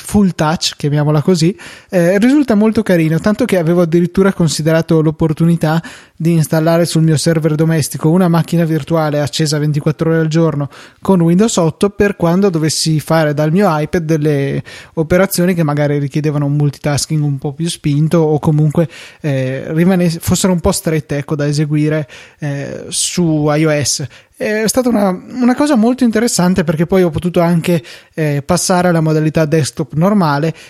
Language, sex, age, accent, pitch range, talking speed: Italian, male, 20-39, native, 150-180 Hz, 155 wpm